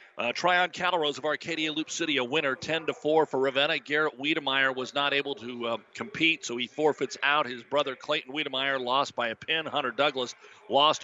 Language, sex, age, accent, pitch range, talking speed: English, male, 50-69, American, 135-165 Hz, 190 wpm